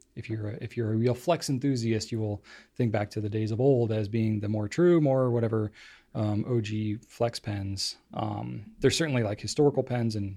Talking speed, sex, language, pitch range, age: 210 wpm, male, English, 110-140 Hz, 30-49